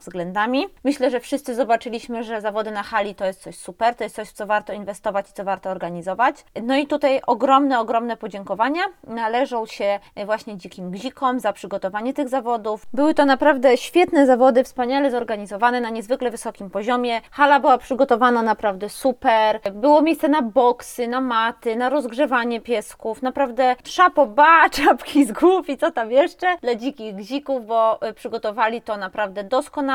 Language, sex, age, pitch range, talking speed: Polish, female, 20-39, 220-270 Hz, 160 wpm